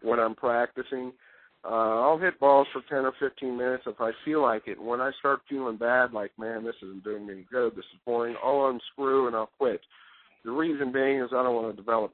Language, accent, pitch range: English, American, 110-140 Hz